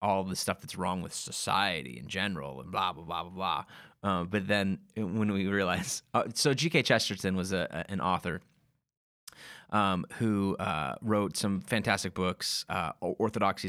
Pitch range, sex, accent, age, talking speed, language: 90-110 Hz, male, American, 30-49, 170 wpm, English